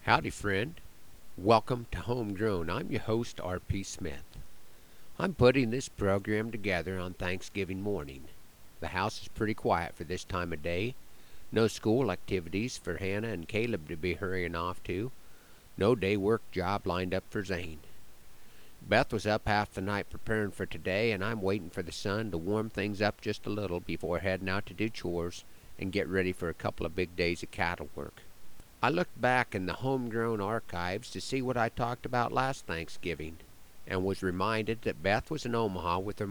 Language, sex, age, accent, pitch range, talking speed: English, male, 50-69, American, 90-110 Hz, 185 wpm